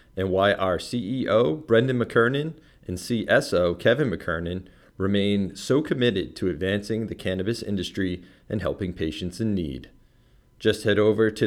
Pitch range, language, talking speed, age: 95-115 Hz, English, 140 wpm, 40-59